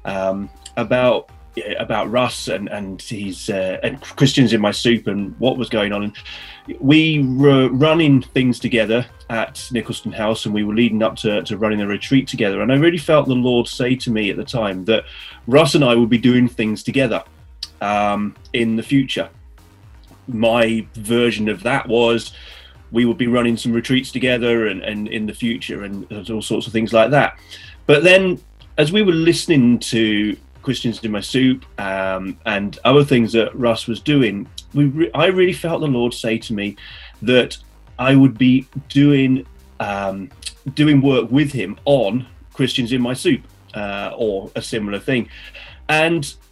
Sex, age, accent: male, 30-49, British